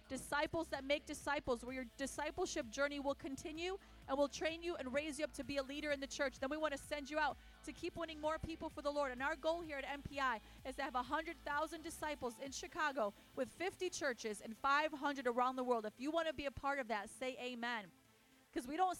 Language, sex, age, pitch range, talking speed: English, female, 30-49, 255-305 Hz, 235 wpm